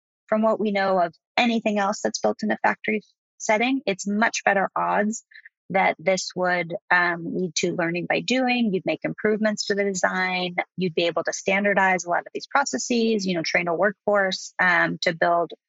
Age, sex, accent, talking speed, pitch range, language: 30-49, female, American, 190 wpm, 185-215 Hz, English